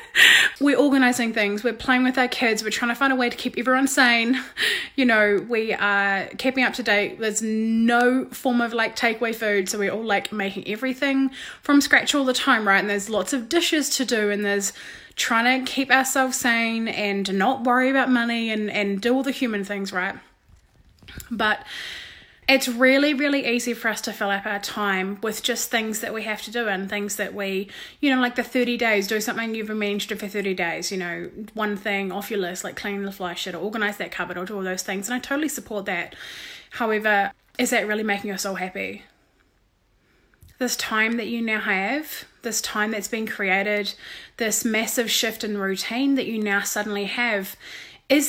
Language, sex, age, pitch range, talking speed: English, female, 20-39, 205-250 Hz, 210 wpm